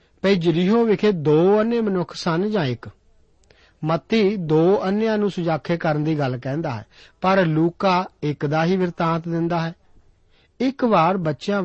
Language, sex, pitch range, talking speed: Punjabi, male, 150-210 Hz, 150 wpm